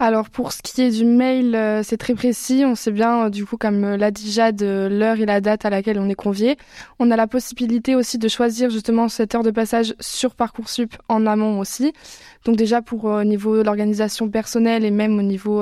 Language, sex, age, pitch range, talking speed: French, female, 20-39, 215-240 Hz, 230 wpm